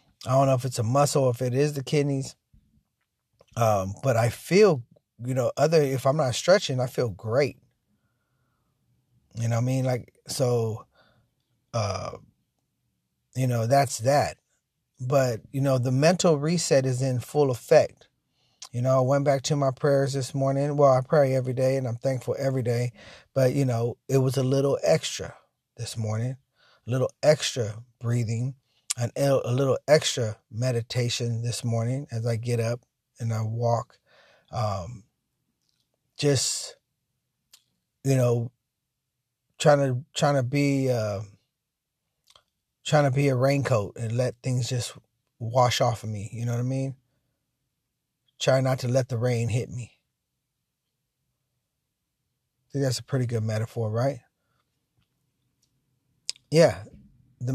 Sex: male